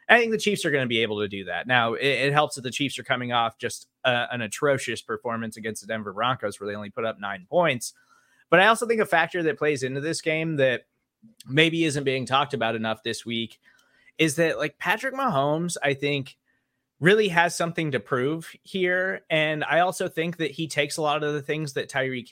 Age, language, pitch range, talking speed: 20-39, English, 120-160 Hz, 225 wpm